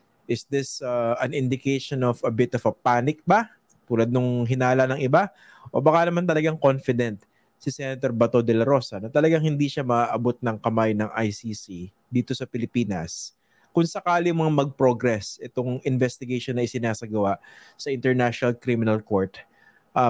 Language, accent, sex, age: English, Filipino, male, 20-39